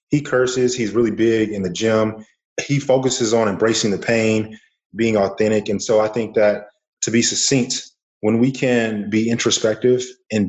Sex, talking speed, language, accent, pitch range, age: male, 170 wpm, English, American, 100-115 Hz, 30-49